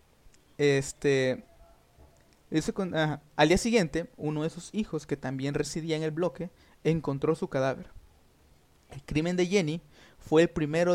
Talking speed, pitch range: 145 wpm, 140-170 Hz